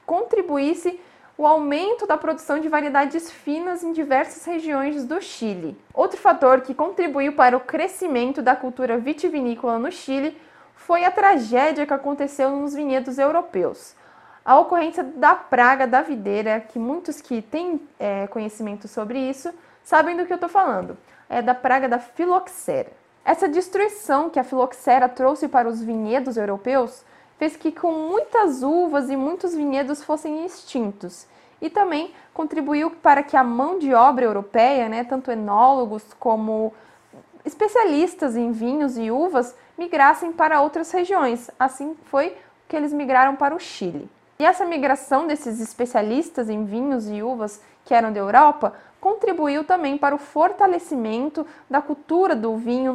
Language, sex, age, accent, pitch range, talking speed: Portuguese, female, 20-39, Brazilian, 250-330 Hz, 145 wpm